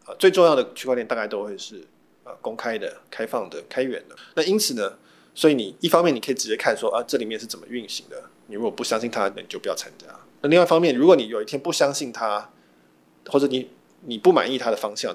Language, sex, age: Chinese, male, 20-39